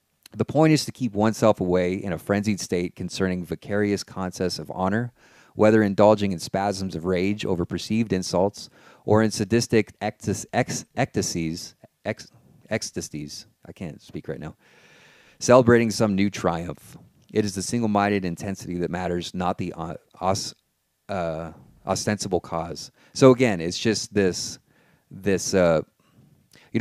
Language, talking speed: English, 130 wpm